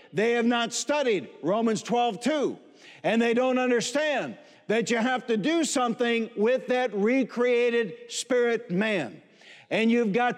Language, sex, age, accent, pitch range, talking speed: English, male, 60-79, American, 230-265 Hz, 145 wpm